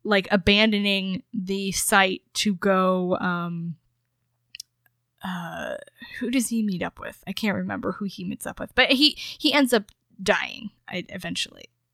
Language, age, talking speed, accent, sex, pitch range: English, 10-29, 145 wpm, American, female, 180-215 Hz